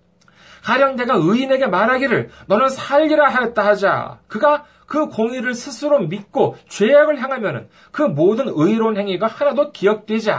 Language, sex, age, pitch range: Korean, male, 40-59, 195-275 Hz